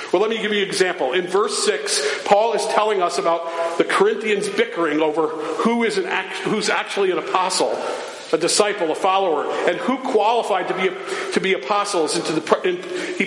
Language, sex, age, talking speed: English, male, 50-69, 200 wpm